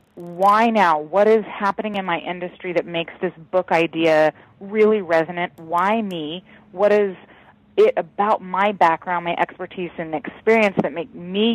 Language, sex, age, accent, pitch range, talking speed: English, female, 30-49, American, 165-195 Hz, 155 wpm